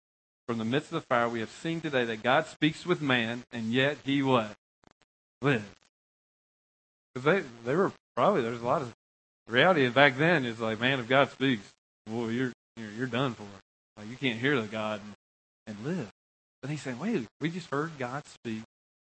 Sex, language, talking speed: male, English, 200 wpm